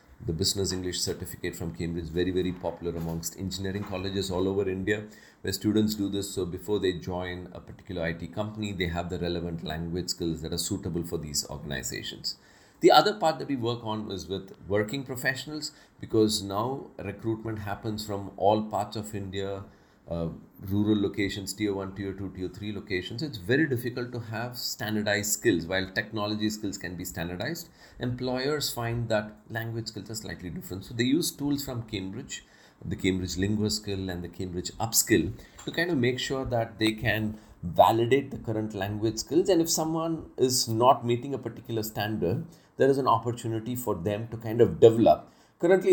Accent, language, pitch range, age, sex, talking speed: Indian, English, 95-115 Hz, 40-59, male, 180 wpm